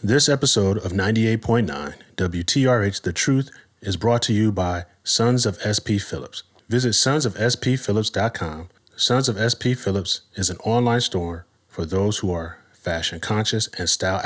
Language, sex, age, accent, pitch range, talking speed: English, male, 30-49, American, 95-120 Hz, 145 wpm